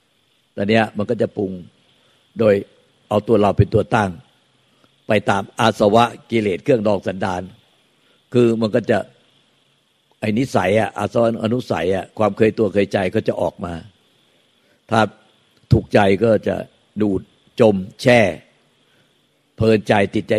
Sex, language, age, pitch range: male, Thai, 60-79, 100-115 Hz